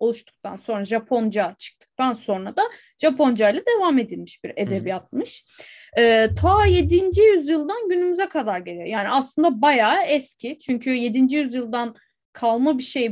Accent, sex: native, female